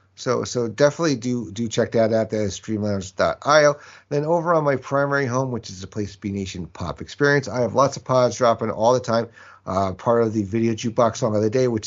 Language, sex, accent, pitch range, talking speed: English, male, American, 100-130 Hz, 235 wpm